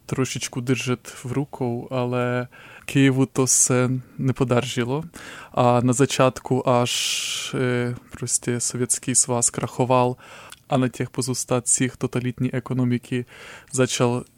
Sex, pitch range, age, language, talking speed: male, 120-130 Hz, 20-39, Czech, 95 wpm